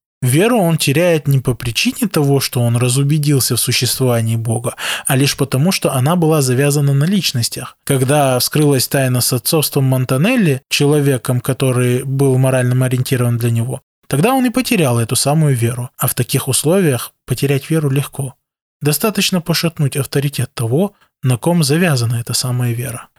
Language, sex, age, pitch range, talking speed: Russian, male, 20-39, 130-165 Hz, 155 wpm